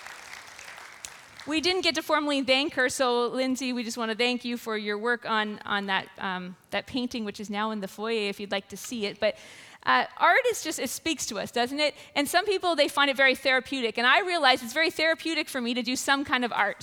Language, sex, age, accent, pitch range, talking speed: English, female, 40-59, American, 225-270 Hz, 245 wpm